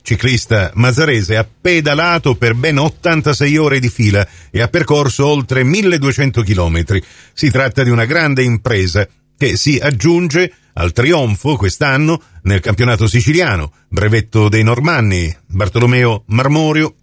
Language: Italian